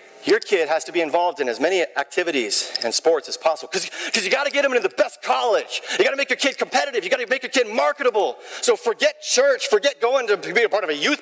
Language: English